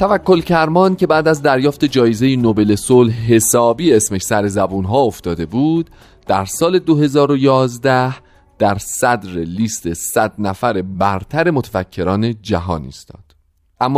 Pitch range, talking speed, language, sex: 95-140 Hz, 125 wpm, Persian, male